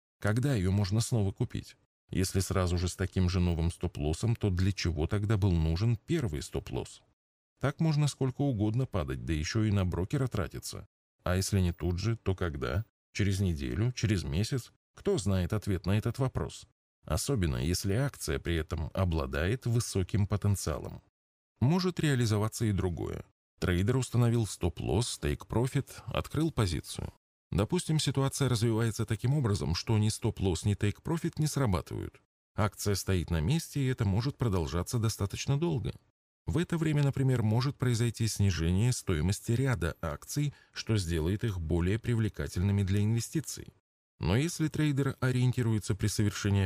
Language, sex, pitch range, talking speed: Russian, male, 90-125 Hz, 145 wpm